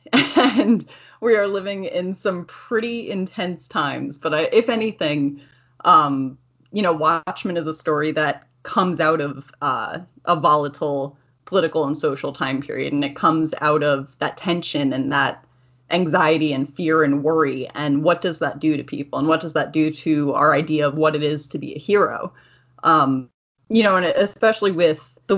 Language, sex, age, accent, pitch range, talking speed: English, female, 20-39, American, 145-175 Hz, 175 wpm